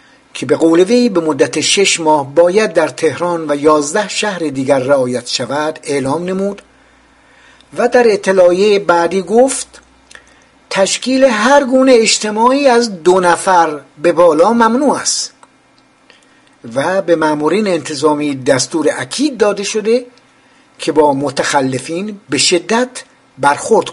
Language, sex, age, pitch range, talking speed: Persian, male, 60-79, 155-255 Hz, 120 wpm